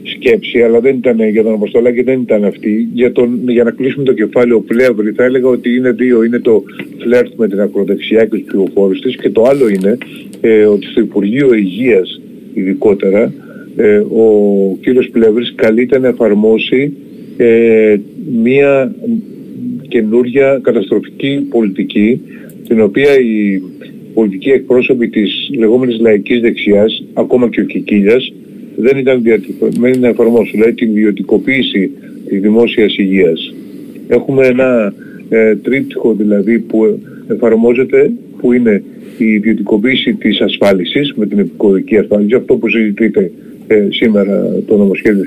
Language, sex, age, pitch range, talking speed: Greek, male, 50-69, 110-130 Hz, 135 wpm